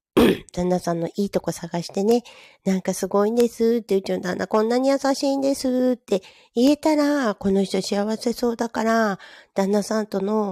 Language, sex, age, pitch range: Japanese, female, 40-59, 170-225 Hz